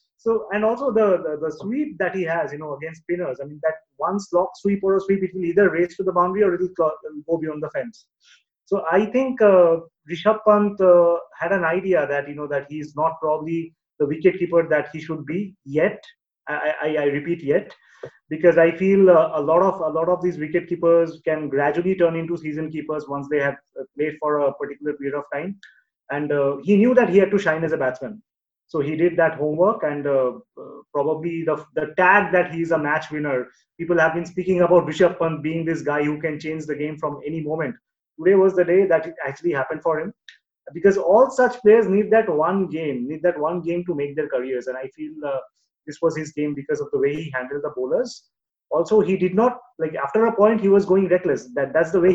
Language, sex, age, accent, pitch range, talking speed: English, male, 30-49, Indian, 150-190 Hz, 235 wpm